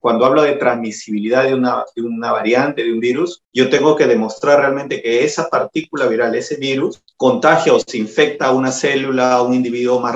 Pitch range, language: 125-155 Hz, Spanish